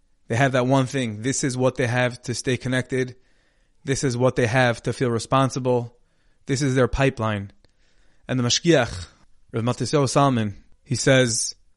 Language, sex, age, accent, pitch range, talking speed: English, male, 20-39, American, 110-135 Hz, 165 wpm